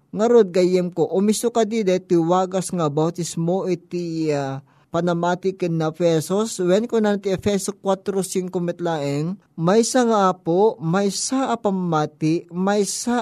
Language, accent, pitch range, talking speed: Filipino, native, 160-205 Hz, 120 wpm